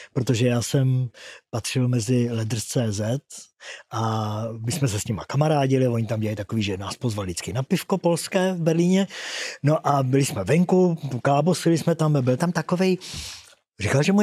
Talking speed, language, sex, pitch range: 170 wpm, Czech, male, 120-160 Hz